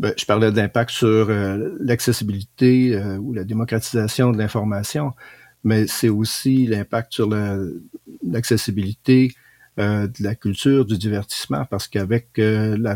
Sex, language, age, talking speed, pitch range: male, French, 50-69, 140 wpm, 100-120 Hz